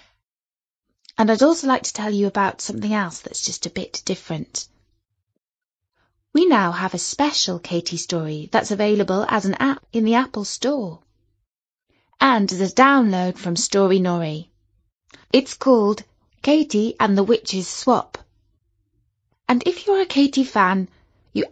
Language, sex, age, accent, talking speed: English, female, 20-39, British, 145 wpm